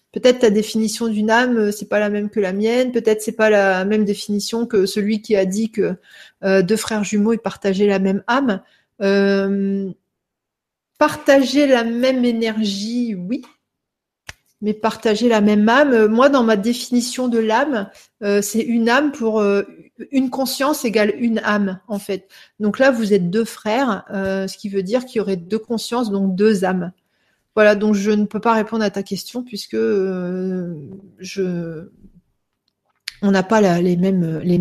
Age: 40-59